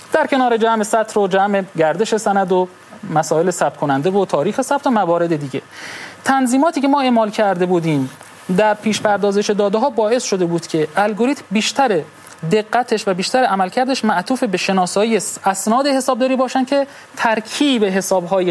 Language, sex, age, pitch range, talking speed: Persian, male, 30-49, 175-230 Hz, 155 wpm